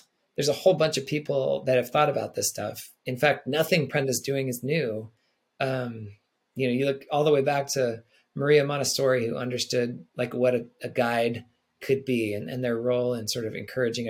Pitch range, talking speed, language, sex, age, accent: 120-140 Hz, 205 wpm, English, male, 20-39, American